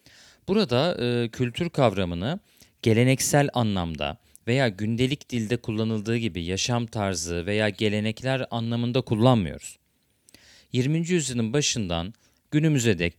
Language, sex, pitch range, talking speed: Turkish, male, 95-125 Hz, 100 wpm